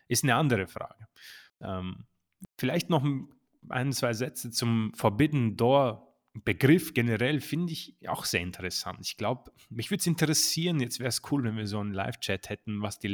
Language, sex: German, male